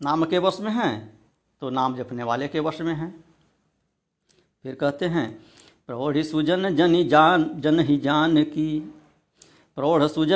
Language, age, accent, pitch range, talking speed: Hindi, 60-79, native, 135-180 Hz, 135 wpm